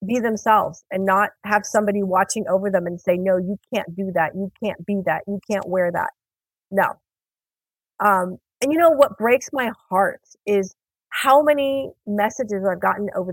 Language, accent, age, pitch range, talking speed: English, American, 40-59, 195-280 Hz, 180 wpm